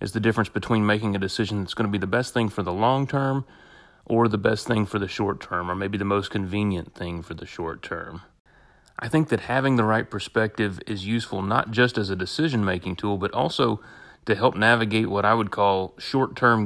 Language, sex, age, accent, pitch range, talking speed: English, male, 30-49, American, 95-110 Hz, 220 wpm